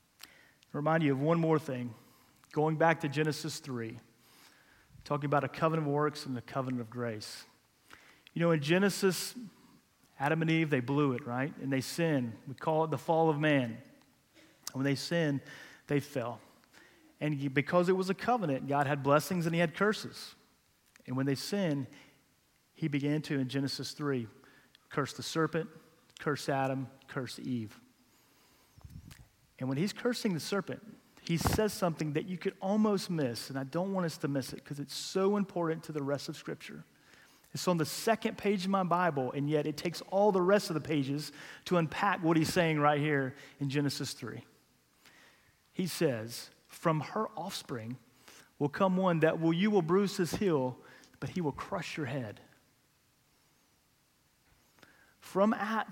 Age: 40-59